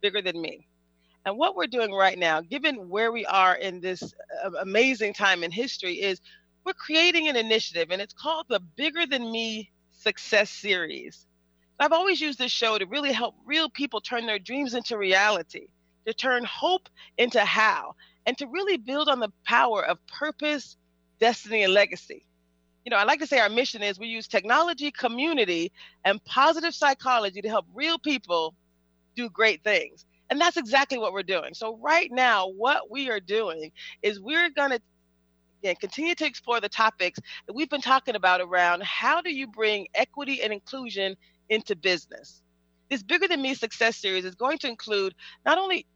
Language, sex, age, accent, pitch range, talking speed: English, female, 40-59, American, 190-280 Hz, 180 wpm